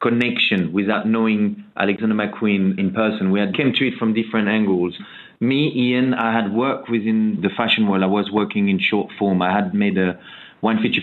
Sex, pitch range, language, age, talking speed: male, 100-120 Hz, English, 30-49, 195 wpm